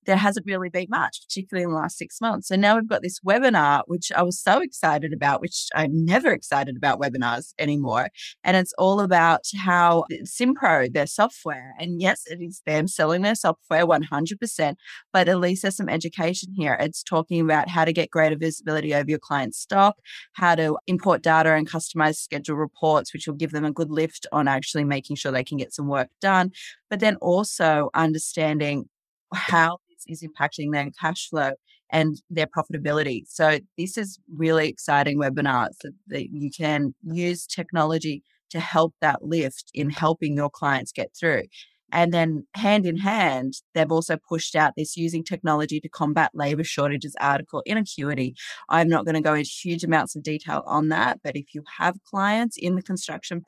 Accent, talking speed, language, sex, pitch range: Australian, 185 wpm, English, female, 150-185 Hz